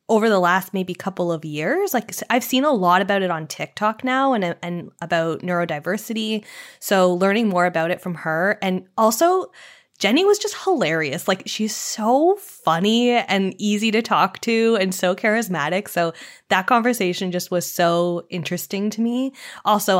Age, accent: 10-29, American